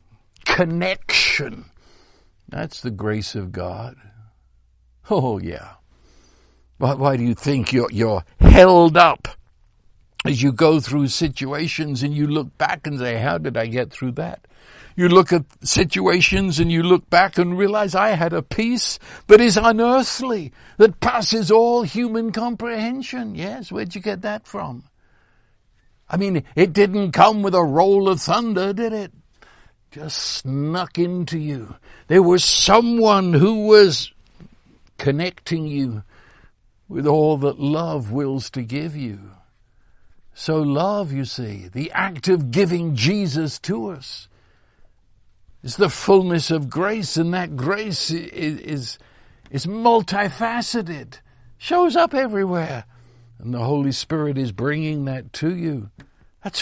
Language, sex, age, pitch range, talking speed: English, male, 60-79, 125-195 Hz, 135 wpm